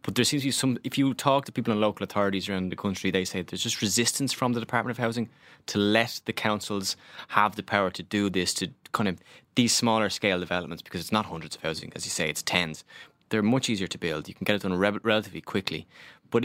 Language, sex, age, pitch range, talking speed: English, male, 20-39, 90-120 Hz, 250 wpm